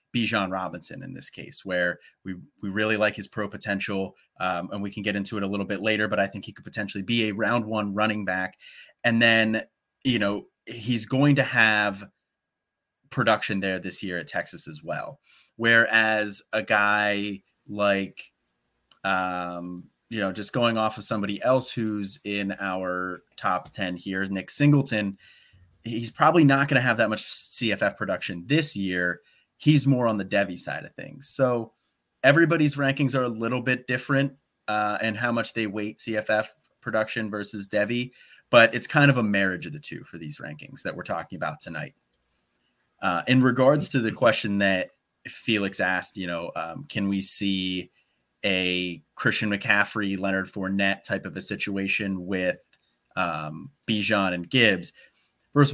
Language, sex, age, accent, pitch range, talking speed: English, male, 30-49, American, 95-115 Hz, 170 wpm